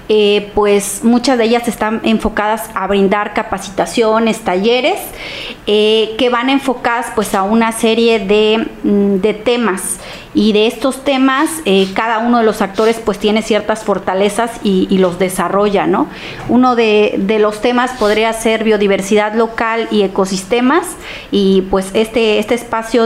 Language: Spanish